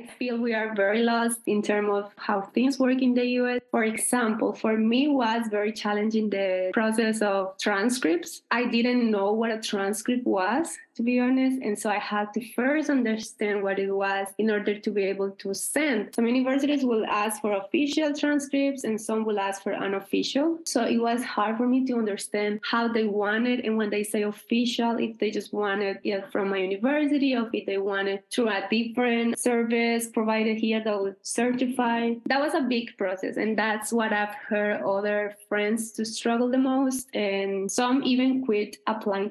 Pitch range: 205-255 Hz